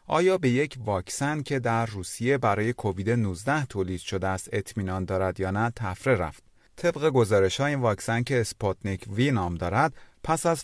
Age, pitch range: 30-49, 95-130 Hz